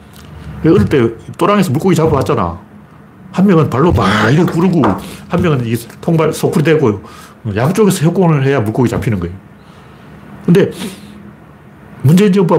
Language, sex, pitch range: Korean, male, 115-170 Hz